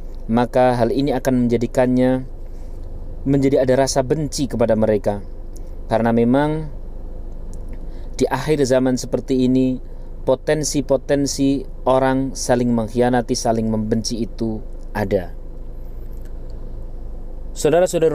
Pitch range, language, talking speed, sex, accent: 115-150 Hz, Indonesian, 90 wpm, male, native